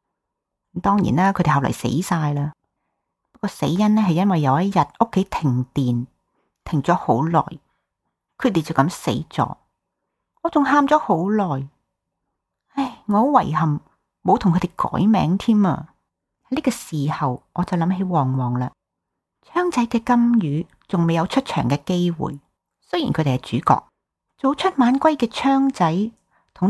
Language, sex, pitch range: Chinese, female, 160-245 Hz